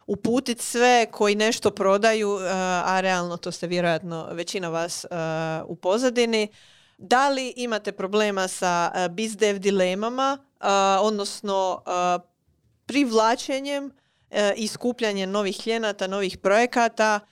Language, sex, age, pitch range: Croatian, female, 30-49, 185-225 Hz